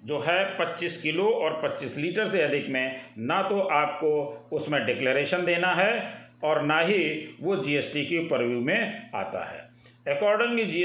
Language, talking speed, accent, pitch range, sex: Hindi, 170 wpm, native, 140-185 Hz, male